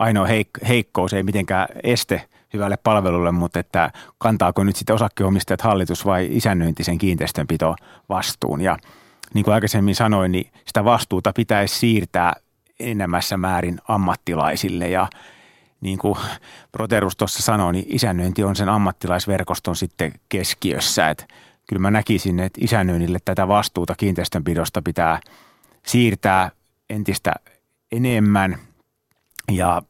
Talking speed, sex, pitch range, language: 120 wpm, male, 90-105 Hz, Finnish